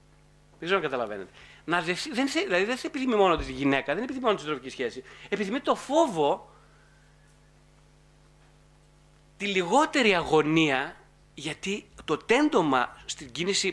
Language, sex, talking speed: Greek, male, 125 wpm